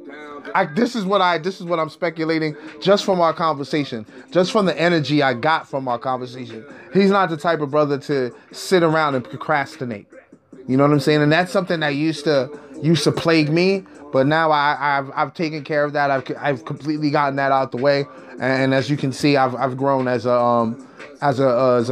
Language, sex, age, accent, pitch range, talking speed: English, male, 20-39, American, 140-175 Hz, 220 wpm